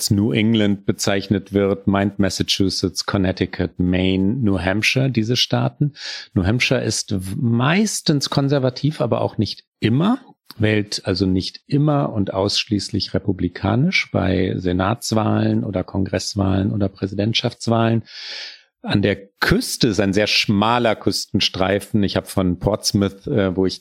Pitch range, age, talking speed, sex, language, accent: 95-115 Hz, 40-59, 120 wpm, male, German, German